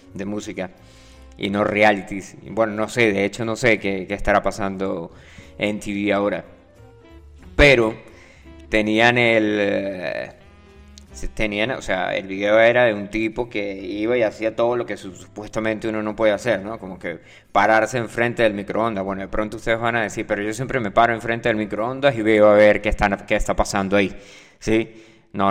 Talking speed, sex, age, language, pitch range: 180 wpm, male, 20-39, Spanish, 100-120 Hz